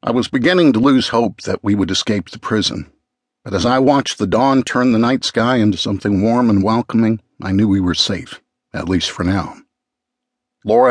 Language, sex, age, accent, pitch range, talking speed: English, male, 60-79, American, 95-135 Hz, 205 wpm